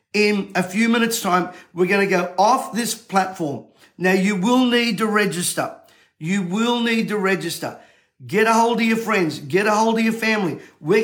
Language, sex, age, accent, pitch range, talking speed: English, male, 50-69, Australian, 180-215 Hz, 195 wpm